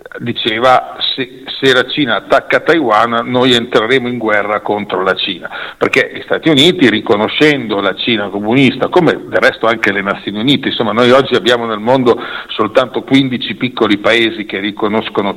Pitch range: 110-135 Hz